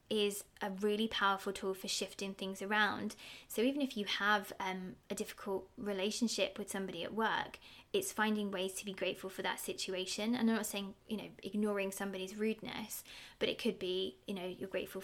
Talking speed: 190 wpm